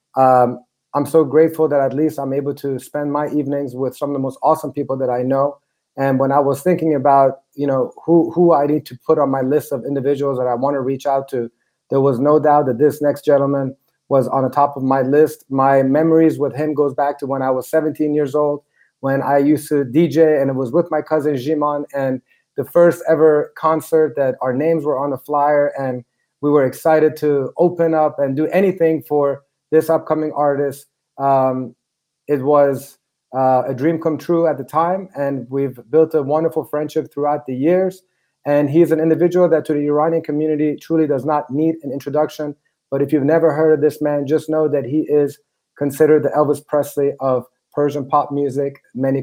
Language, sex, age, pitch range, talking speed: English, male, 30-49, 135-155 Hz, 210 wpm